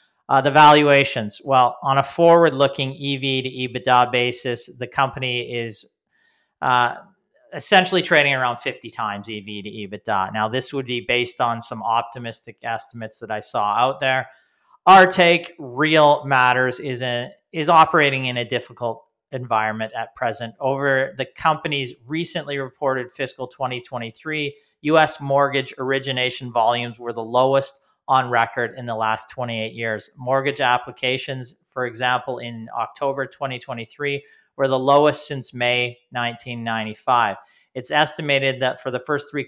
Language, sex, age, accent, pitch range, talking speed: English, male, 40-59, American, 120-140 Hz, 140 wpm